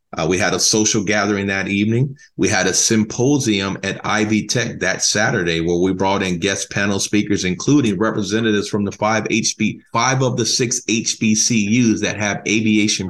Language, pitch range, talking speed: English, 100-115 Hz, 175 wpm